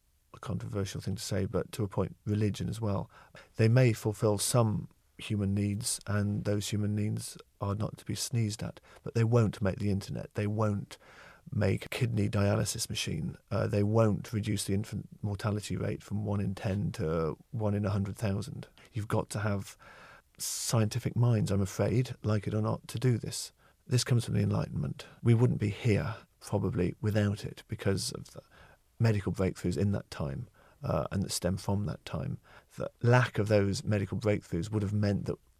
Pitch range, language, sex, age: 95-110 Hz, English, male, 40-59